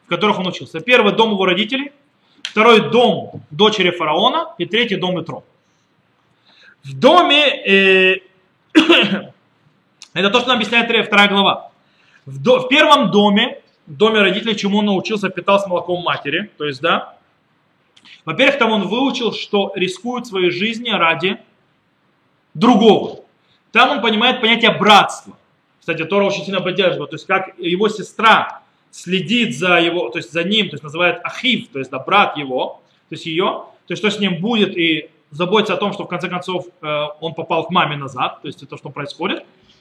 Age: 30-49